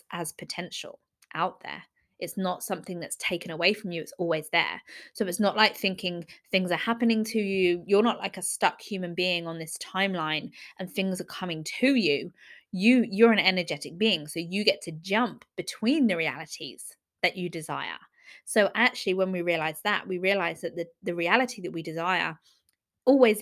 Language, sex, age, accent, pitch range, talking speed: English, female, 20-39, British, 170-220 Hz, 185 wpm